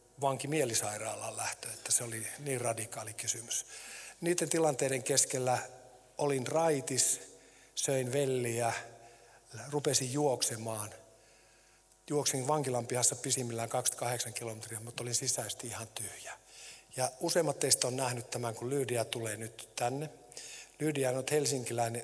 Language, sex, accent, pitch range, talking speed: Finnish, male, native, 115-145 Hz, 115 wpm